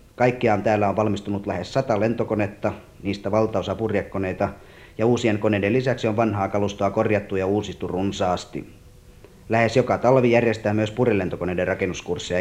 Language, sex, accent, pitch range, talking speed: Finnish, male, native, 95-115 Hz, 135 wpm